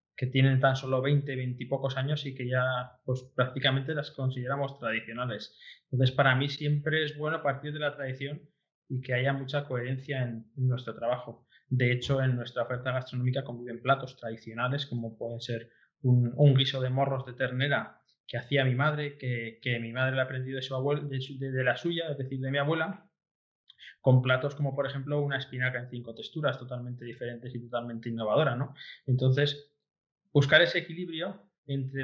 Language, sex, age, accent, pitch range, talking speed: Portuguese, male, 20-39, Spanish, 125-145 Hz, 185 wpm